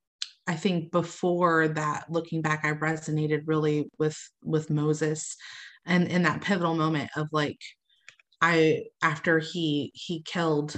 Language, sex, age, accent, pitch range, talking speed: English, female, 30-49, American, 150-170 Hz, 135 wpm